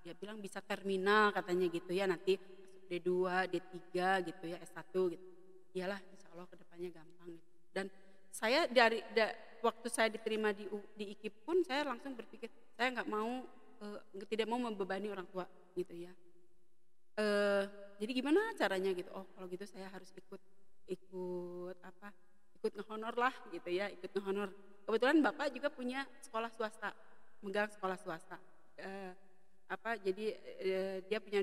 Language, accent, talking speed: Indonesian, native, 155 wpm